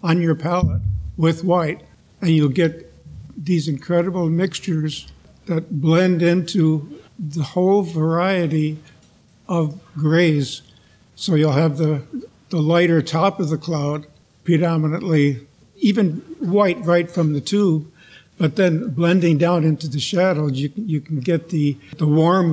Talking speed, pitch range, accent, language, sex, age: 135 wpm, 150-175 Hz, American, English, male, 50-69